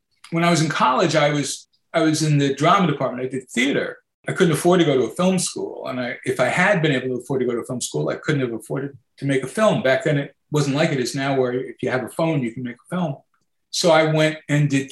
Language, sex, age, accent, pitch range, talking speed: English, male, 50-69, American, 135-170 Hz, 290 wpm